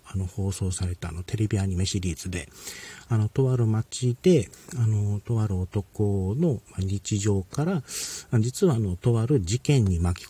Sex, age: male, 40-59